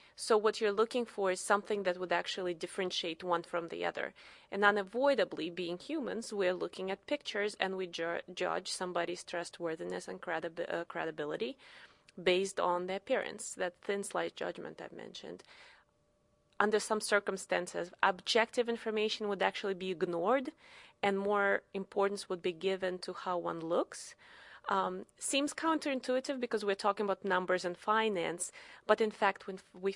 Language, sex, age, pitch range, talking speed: English, female, 30-49, 185-235 Hz, 155 wpm